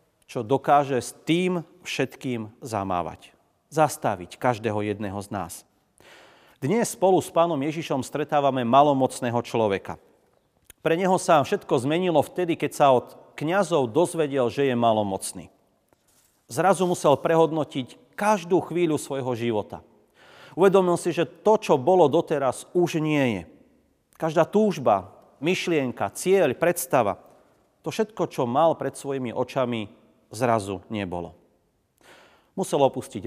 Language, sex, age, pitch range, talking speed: Slovak, male, 40-59, 110-160 Hz, 120 wpm